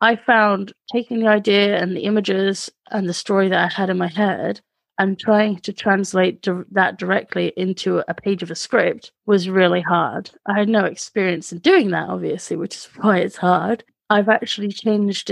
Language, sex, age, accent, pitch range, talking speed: English, female, 30-49, British, 180-215 Hz, 190 wpm